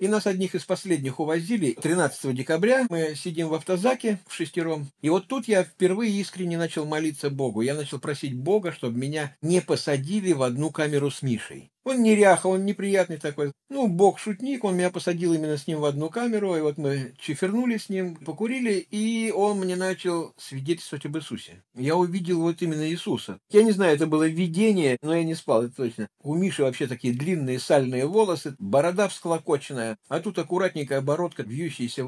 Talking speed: 180 wpm